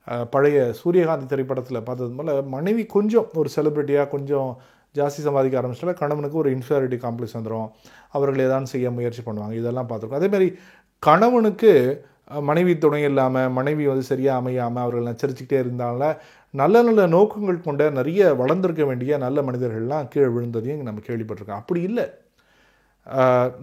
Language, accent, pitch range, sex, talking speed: Tamil, native, 125-155 Hz, male, 130 wpm